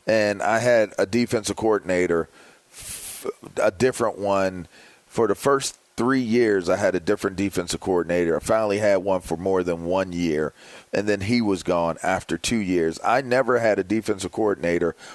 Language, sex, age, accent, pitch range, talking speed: English, male, 40-59, American, 90-120 Hz, 170 wpm